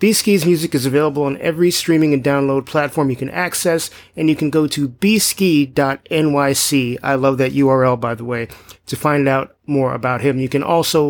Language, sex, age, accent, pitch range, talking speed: English, male, 30-49, American, 135-165 Hz, 190 wpm